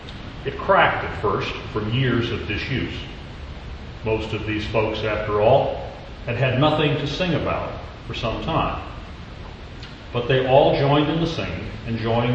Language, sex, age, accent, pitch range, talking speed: English, male, 40-59, American, 105-140 Hz, 150 wpm